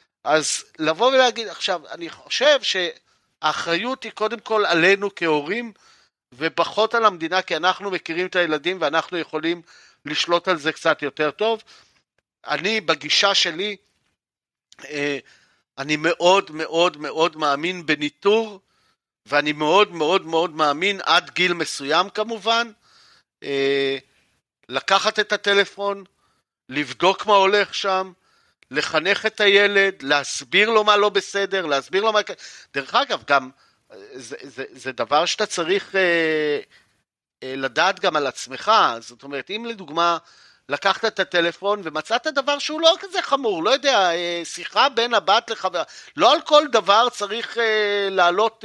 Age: 50-69